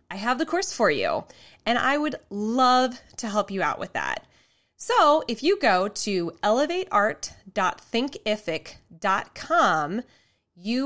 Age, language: 20-39, English